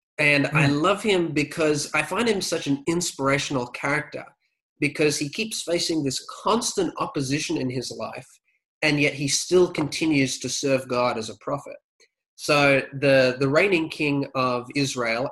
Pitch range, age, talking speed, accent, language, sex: 125-150 Hz, 20-39, 155 wpm, Australian, English, male